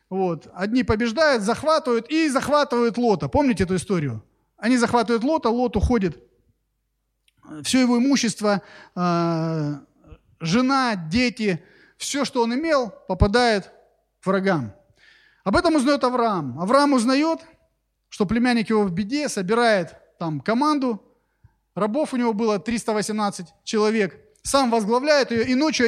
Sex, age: male, 30-49